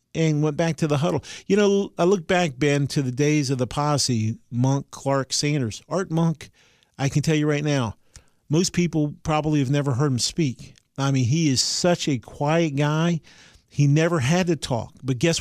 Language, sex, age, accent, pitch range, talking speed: English, male, 40-59, American, 125-150 Hz, 205 wpm